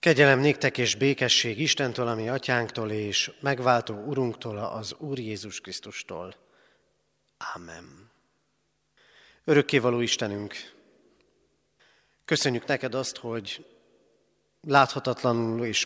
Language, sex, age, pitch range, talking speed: Hungarian, male, 30-49, 105-125 Hz, 85 wpm